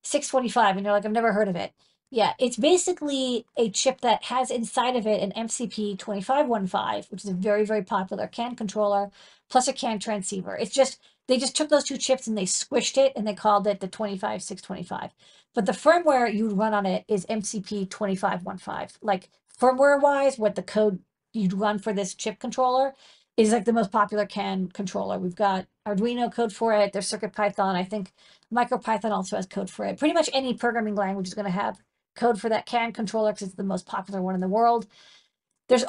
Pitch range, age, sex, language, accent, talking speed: 200-240 Hz, 40-59, female, English, American, 205 wpm